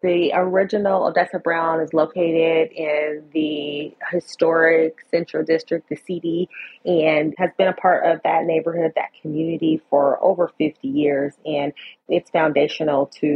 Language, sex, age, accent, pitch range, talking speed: English, female, 30-49, American, 155-180 Hz, 140 wpm